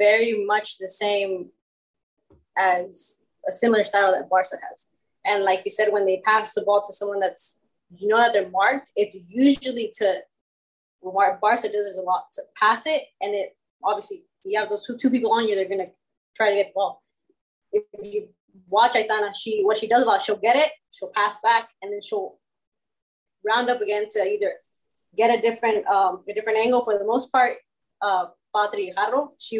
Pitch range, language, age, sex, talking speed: 195-235 Hz, English, 20-39, female, 195 wpm